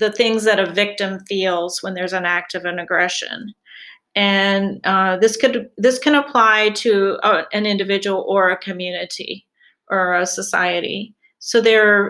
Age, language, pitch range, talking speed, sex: 40-59, English, 190-215 Hz, 160 wpm, female